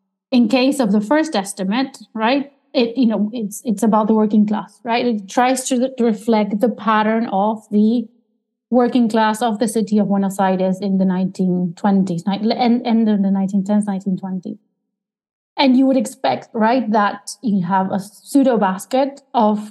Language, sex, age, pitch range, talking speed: English, female, 30-49, 200-250 Hz, 165 wpm